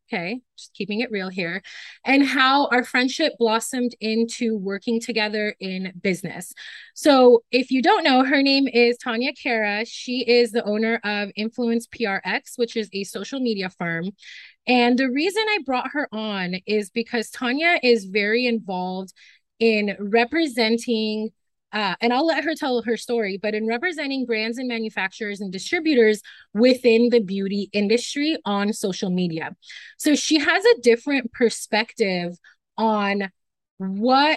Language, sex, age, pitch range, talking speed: English, female, 20-39, 215-275 Hz, 150 wpm